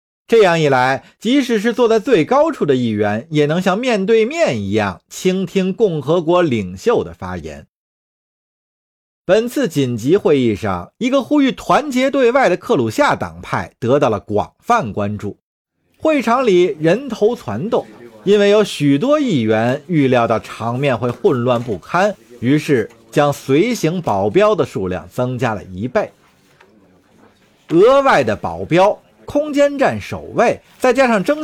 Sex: male